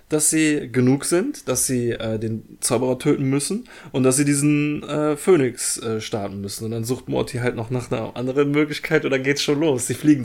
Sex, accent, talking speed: male, German, 210 wpm